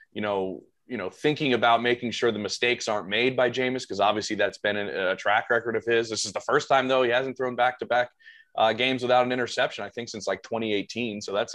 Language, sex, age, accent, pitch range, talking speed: English, male, 20-39, American, 105-120 Hz, 250 wpm